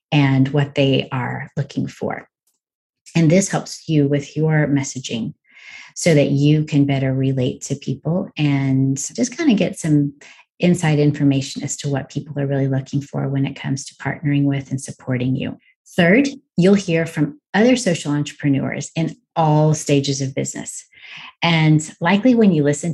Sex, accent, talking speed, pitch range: female, American, 165 wpm, 140-165 Hz